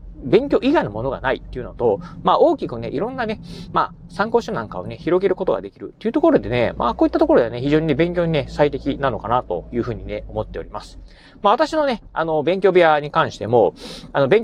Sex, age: male, 30-49